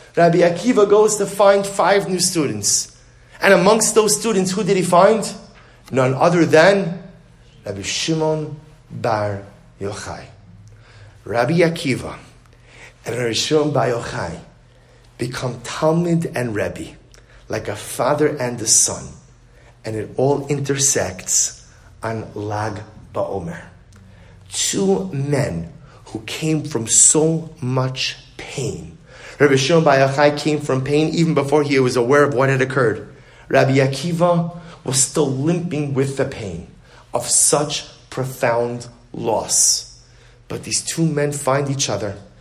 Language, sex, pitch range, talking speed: English, male, 120-155 Hz, 125 wpm